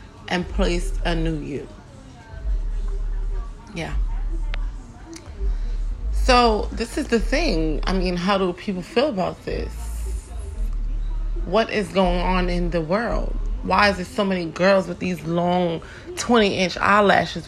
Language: English